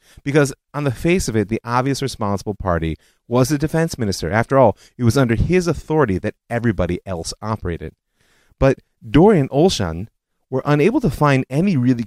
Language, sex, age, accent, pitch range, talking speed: English, male, 30-49, American, 95-125 Hz, 170 wpm